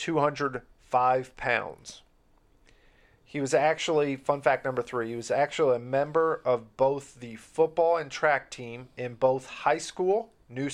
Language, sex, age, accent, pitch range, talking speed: English, male, 40-59, American, 120-155 Hz, 145 wpm